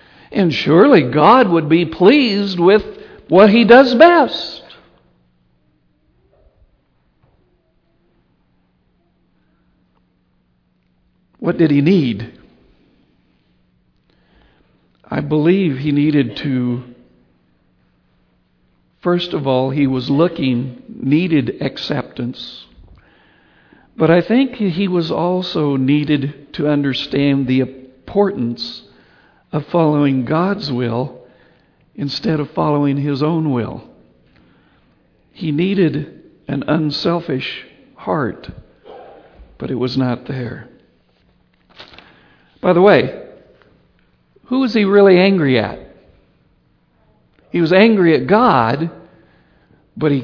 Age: 60-79